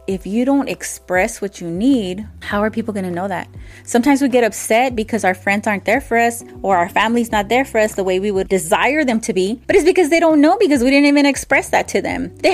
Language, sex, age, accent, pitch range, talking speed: English, female, 20-39, American, 195-265 Hz, 260 wpm